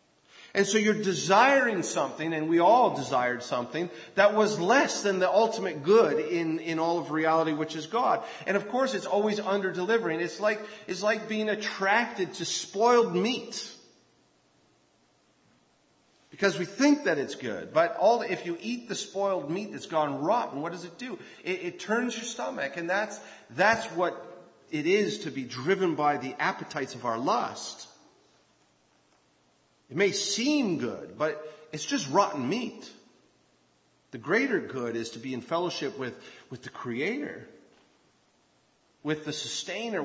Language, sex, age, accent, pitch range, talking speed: English, male, 40-59, American, 160-225 Hz, 160 wpm